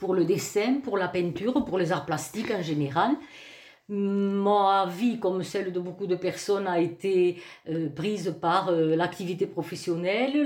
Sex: female